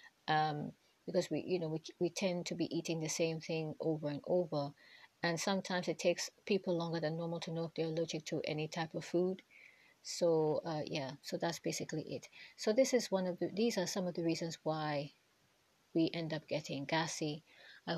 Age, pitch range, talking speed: 30-49, 155-180 Hz, 205 wpm